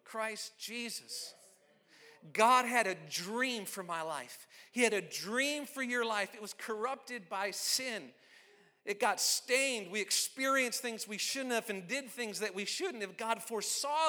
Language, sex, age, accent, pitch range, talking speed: English, male, 40-59, American, 195-260 Hz, 165 wpm